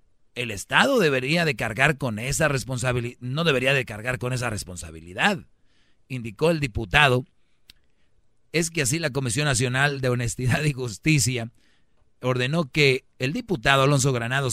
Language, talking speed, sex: Spanish, 140 wpm, male